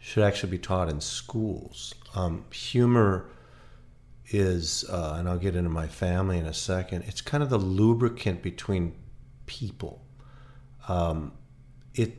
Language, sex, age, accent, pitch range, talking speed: English, male, 40-59, American, 85-110 Hz, 140 wpm